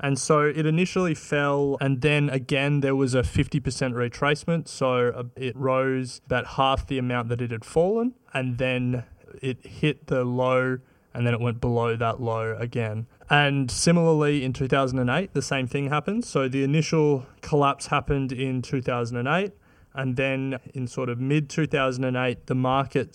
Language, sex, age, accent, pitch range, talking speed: English, male, 20-39, Australian, 120-145 Hz, 160 wpm